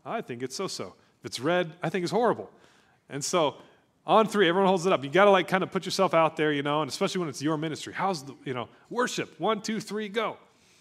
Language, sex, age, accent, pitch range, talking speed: English, male, 30-49, American, 130-170 Hz, 255 wpm